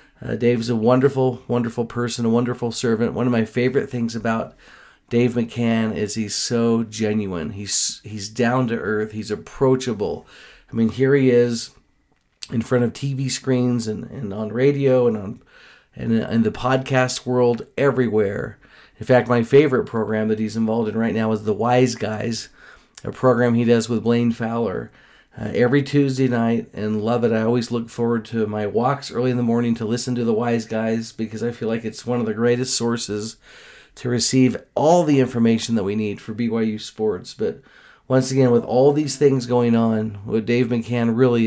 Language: English